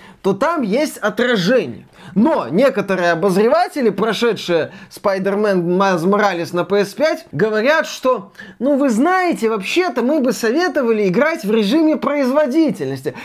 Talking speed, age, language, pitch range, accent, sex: 120 wpm, 20-39, Russian, 200-270 Hz, native, male